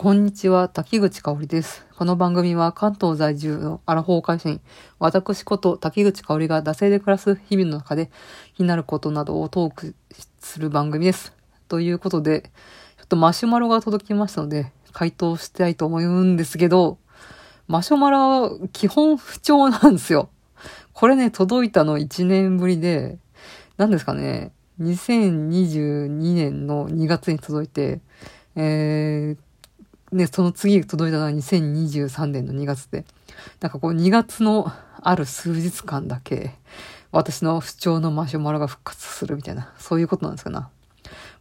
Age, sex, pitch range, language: 40-59, female, 155-205 Hz, Japanese